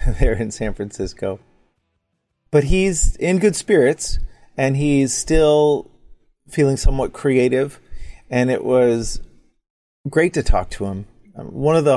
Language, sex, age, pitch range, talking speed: English, male, 30-49, 115-140 Hz, 130 wpm